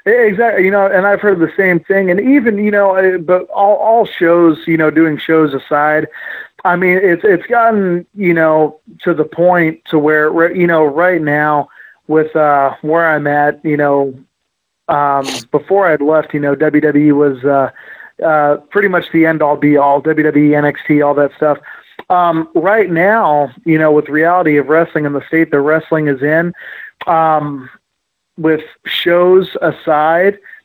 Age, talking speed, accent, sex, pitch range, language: 30-49, 170 wpm, American, male, 145-170 Hz, English